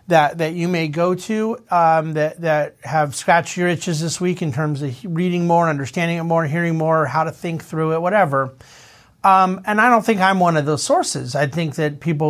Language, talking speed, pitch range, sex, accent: English, 220 wpm, 155-195 Hz, male, American